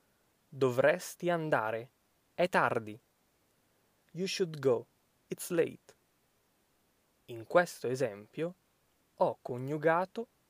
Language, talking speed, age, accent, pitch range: Italian, 80 wpm, 20-39, native, 115-185 Hz